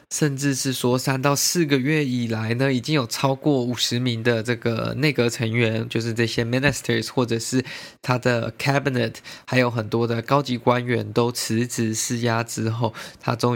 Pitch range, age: 115-130 Hz, 20-39